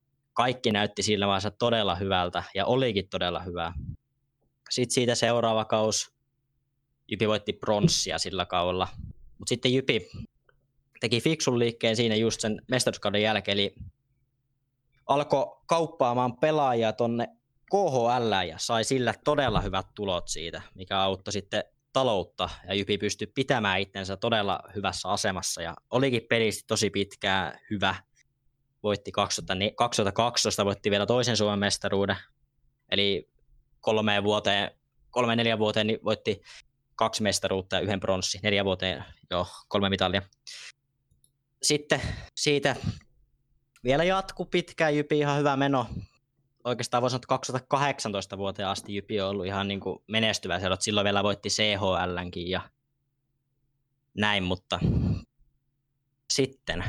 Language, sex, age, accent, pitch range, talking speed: Finnish, male, 20-39, native, 100-135 Hz, 120 wpm